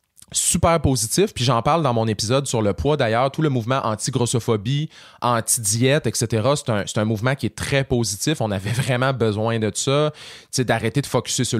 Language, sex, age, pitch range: French, male, 30-49, 115-150 Hz